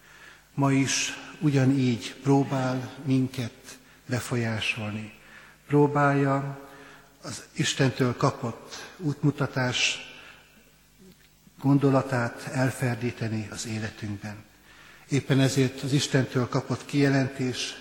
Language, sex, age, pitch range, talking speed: Hungarian, male, 60-79, 115-135 Hz, 70 wpm